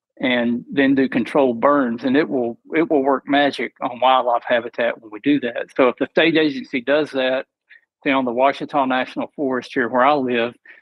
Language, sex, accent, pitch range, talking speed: English, male, American, 125-145 Hz, 200 wpm